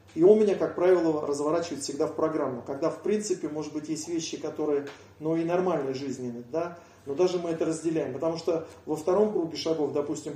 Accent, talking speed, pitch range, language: native, 195 wpm, 150-185 Hz, Russian